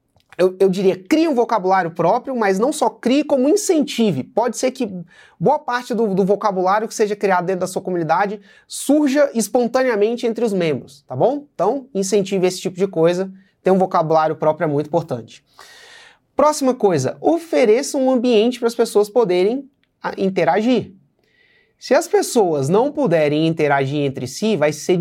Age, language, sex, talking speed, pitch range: 30-49, Portuguese, male, 165 wpm, 165-235 Hz